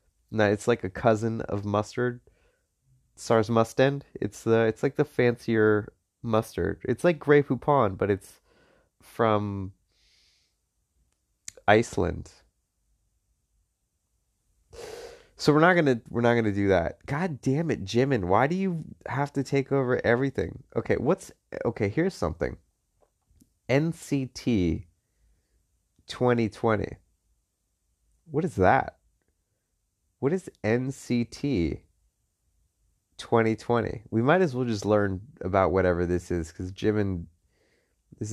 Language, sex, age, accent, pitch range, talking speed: English, male, 30-49, American, 90-125 Hz, 115 wpm